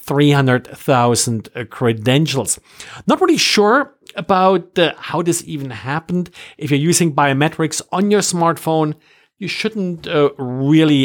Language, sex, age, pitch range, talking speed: English, male, 50-69, 130-170 Hz, 120 wpm